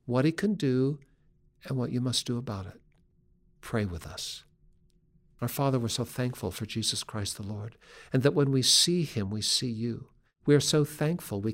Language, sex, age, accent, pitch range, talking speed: English, male, 60-79, American, 120-150 Hz, 200 wpm